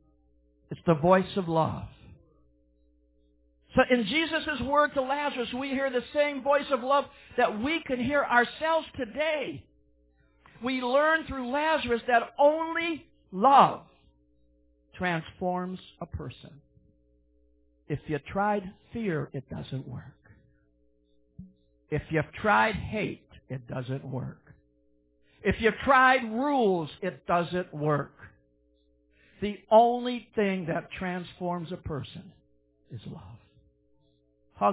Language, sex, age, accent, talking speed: English, male, 60-79, American, 110 wpm